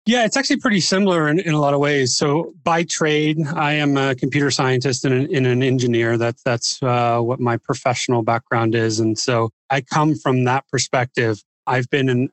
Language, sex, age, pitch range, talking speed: English, male, 30-49, 120-140 Hz, 210 wpm